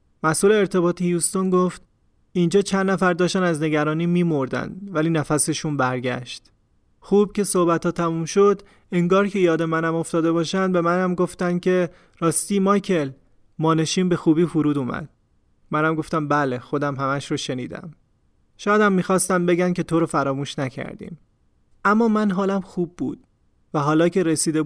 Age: 30-49